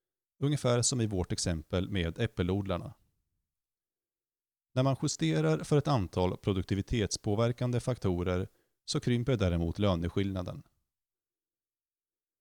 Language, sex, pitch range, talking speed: Swedish, male, 95-125 Hz, 90 wpm